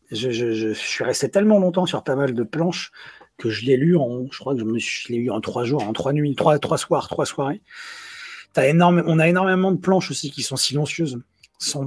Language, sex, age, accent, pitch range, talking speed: French, male, 40-59, French, 125-175 Hz, 200 wpm